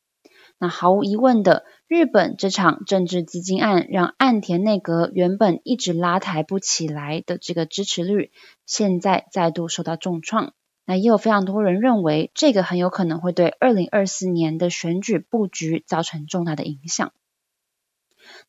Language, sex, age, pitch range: Chinese, female, 20-39, 170-215 Hz